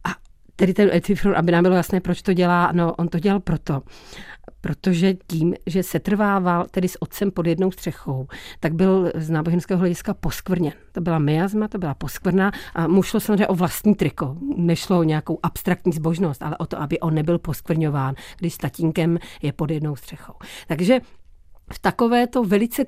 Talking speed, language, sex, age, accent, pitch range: 180 wpm, Czech, female, 40-59, native, 165-190 Hz